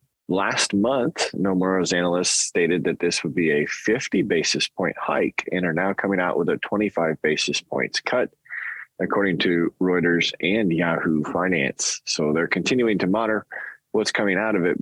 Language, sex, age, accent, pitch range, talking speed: English, male, 20-39, American, 85-105 Hz, 165 wpm